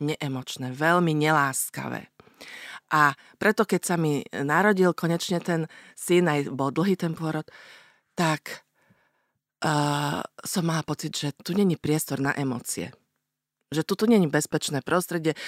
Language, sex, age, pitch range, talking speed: Slovak, female, 40-59, 140-170 Hz, 130 wpm